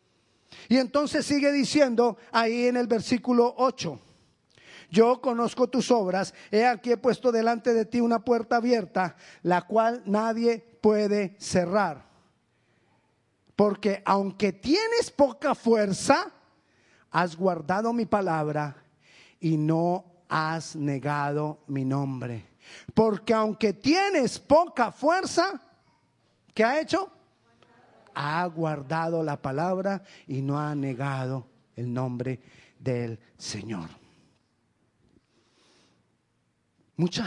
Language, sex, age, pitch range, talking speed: Spanish, male, 40-59, 145-235 Hz, 105 wpm